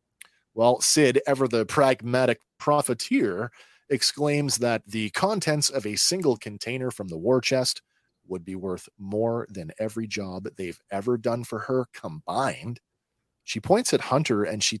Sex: male